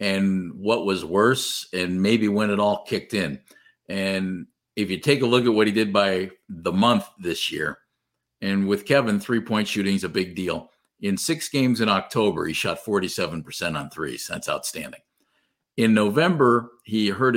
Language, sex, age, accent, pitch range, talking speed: English, male, 50-69, American, 100-125 Hz, 175 wpm